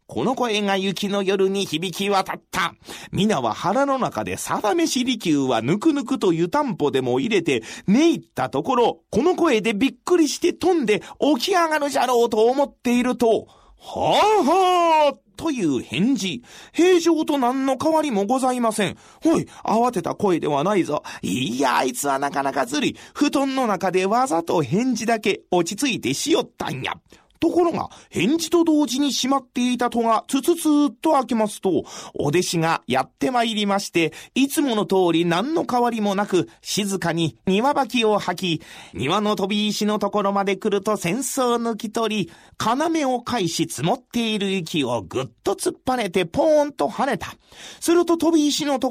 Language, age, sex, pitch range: Japanese, 40-59, male, 195-290 Hz